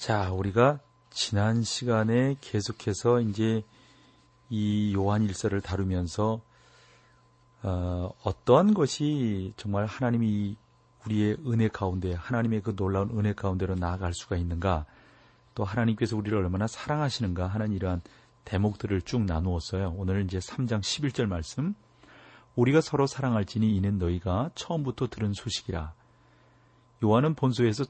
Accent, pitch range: native, 95-125 Hz